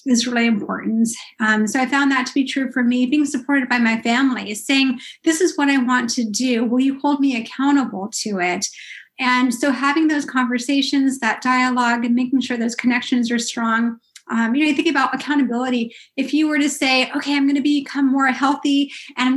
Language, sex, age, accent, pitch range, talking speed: English, female, 30-49, American, 250-310 Hz, 210 wpm